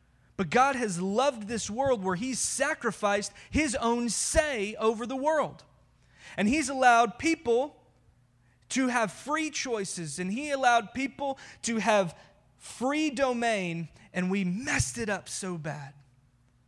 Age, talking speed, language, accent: 20-39, 135 wpm, English, American